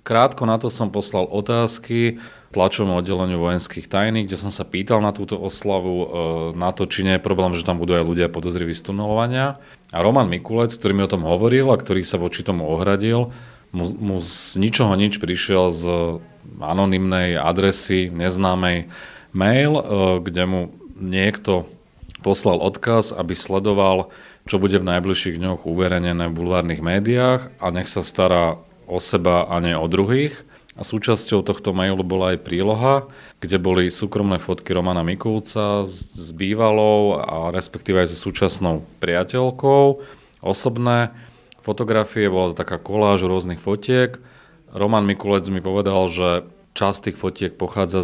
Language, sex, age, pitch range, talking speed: Slovak, male, 40-59, 90-110 Hz, 145 wpm